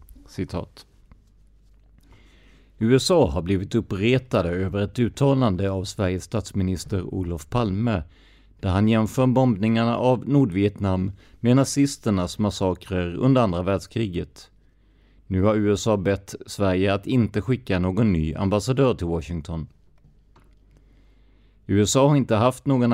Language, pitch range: Swedish, 90-115 Hz